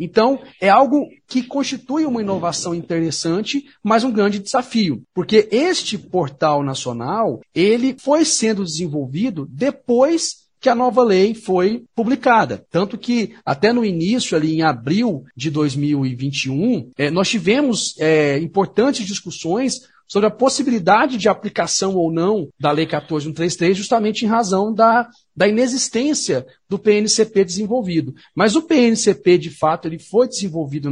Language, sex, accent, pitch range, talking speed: Portuguese, male, Brazilian, 160-230 Hz, 135 wpm